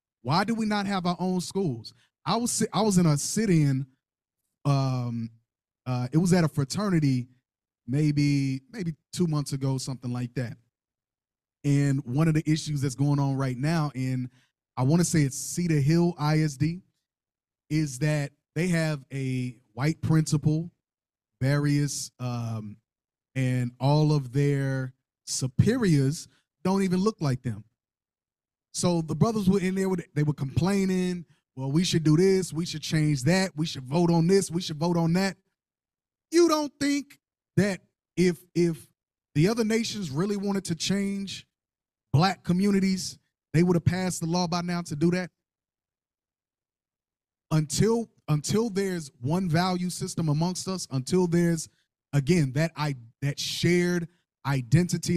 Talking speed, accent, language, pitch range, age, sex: 150 wpm, American, English, 135-175 Hz, 20-39, male